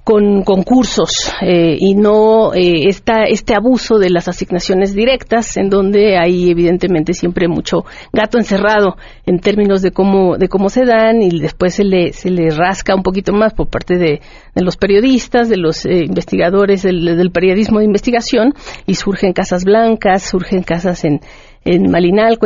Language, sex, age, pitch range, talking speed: Spanish, female, 50-69, 180-220 Hz, 170 wpm